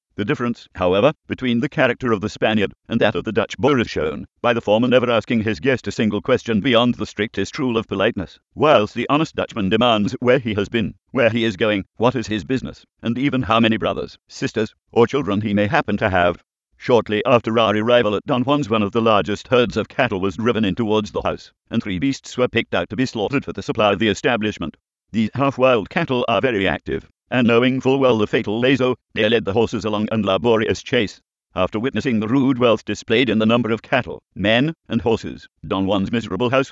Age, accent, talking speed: 50-69, British, 225 wpm